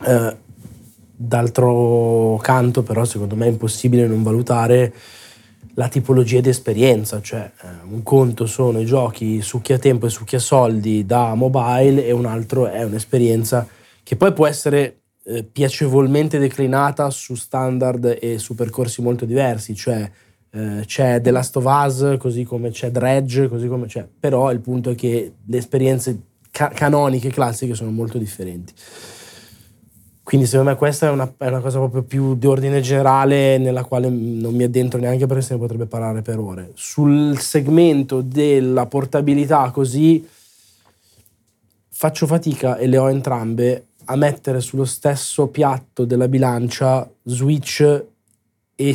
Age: 20-39